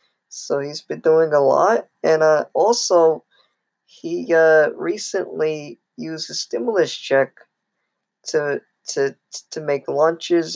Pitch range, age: 135-145 Hz, 20-39